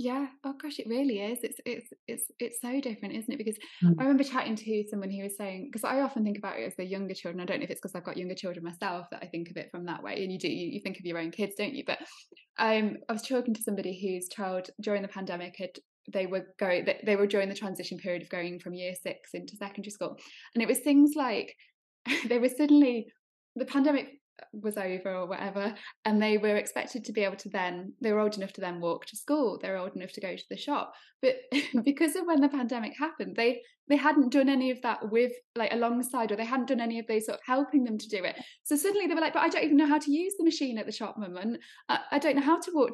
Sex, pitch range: female, 200-270 Hz